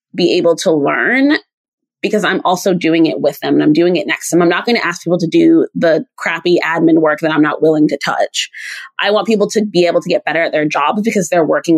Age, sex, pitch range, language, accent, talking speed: 20-39, female, 160-200 Hz, English, American, 260 wpm